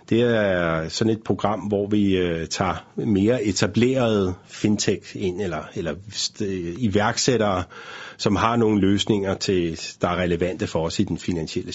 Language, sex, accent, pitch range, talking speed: Danish, male, native, 95-115 Hz, 145 wpm